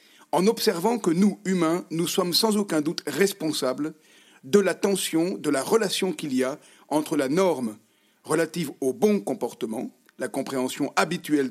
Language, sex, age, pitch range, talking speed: French, male, 50-69, 150-195 Hz, 155 wpm